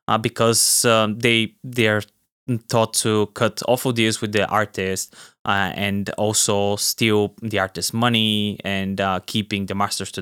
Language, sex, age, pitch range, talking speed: English, male, 20-39, 100-115 Hz, 165 wpm